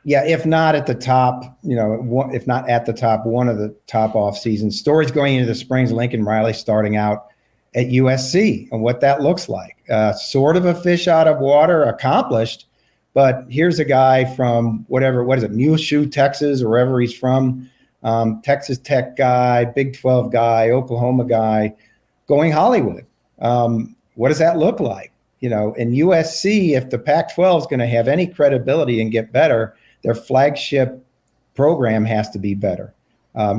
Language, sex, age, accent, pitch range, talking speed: English, male, 50-69, American, 120-140 Hz, 180 wpm